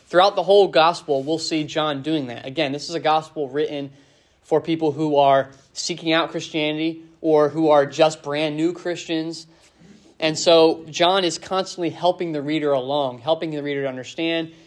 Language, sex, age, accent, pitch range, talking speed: English, male, 20-39, American, 145-170 Hz, 175 wpm